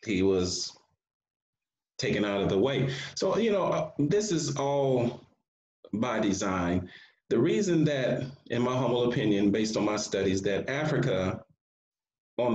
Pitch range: 110-160 Hz